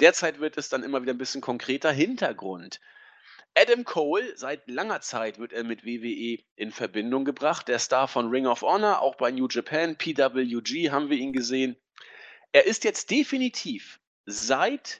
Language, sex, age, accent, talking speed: German, male, 40-59, German, 170 wpm